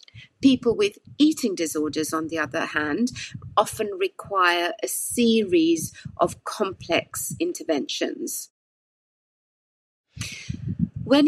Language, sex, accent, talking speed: English, female, British, 85 wpm